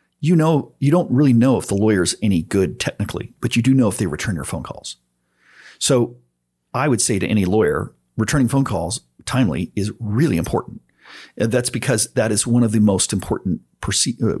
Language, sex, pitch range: English, male, 90-125 Hz